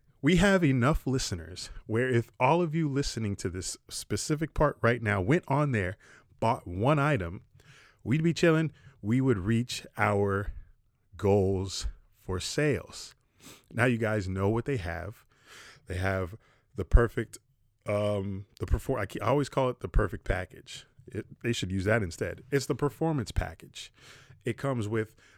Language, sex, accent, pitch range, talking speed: English, male, American, 100-135 Hz, 160 wpm